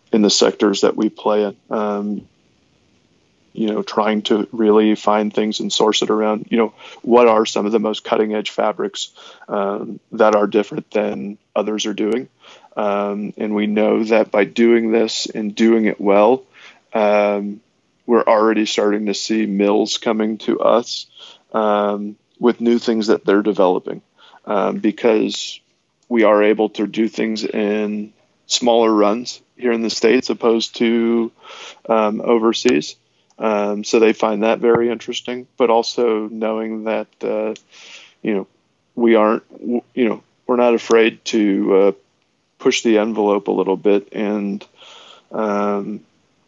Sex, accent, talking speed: male, American, 150 wpm